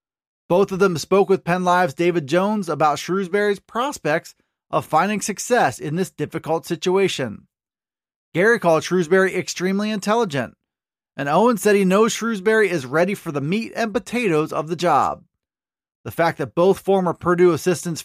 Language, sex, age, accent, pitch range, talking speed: English, male, 20-39, American, 165-210 Hz, 155 wpm